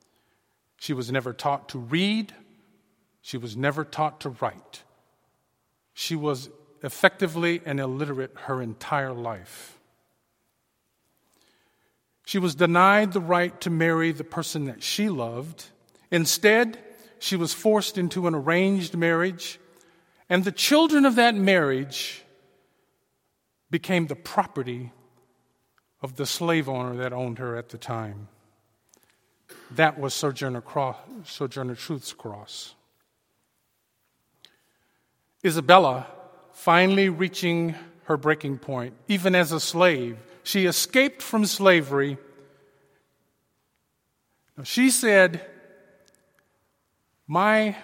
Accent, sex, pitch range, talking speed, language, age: American, male, 140-190 Hz, 105 wpm, English, 50-69